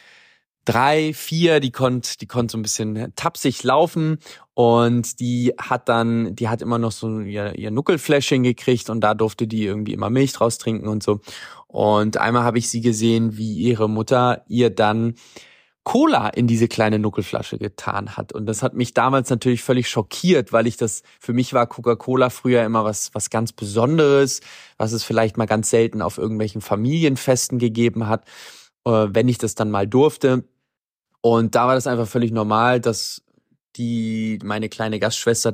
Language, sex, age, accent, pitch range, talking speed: German, male, 20-39, German, 110-125 Hz, 175 wpm